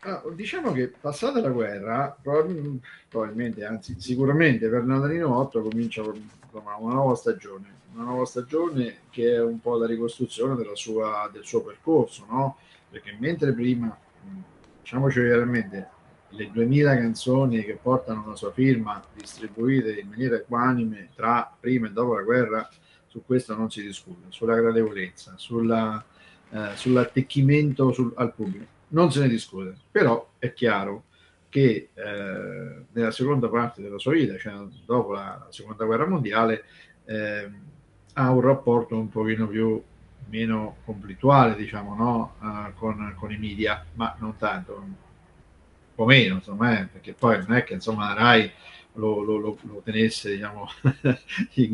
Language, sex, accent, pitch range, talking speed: Italian, male, native, 110-130 Hz, 145 wpm